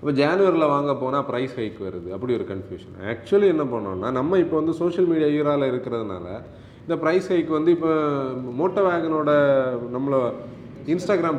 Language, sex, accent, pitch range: Tamil, male, native, 120-175 Hz